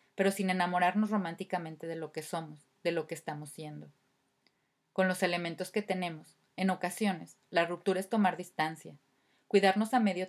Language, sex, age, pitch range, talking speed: Spanish, female, 30-49, 155-190 Hz, 165 wpm